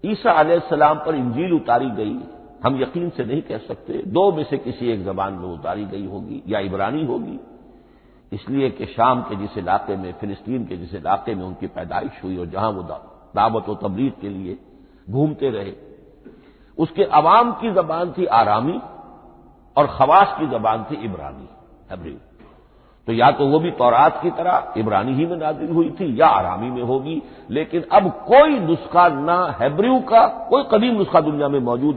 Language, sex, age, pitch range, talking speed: Hindi, male, 50-69, 105-175 Hz, 175 wpm